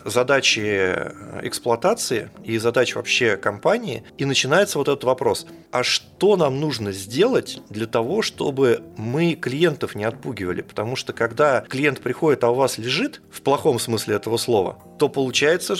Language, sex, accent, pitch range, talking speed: Russian, male, native, 115-145 Hz, 150 wpm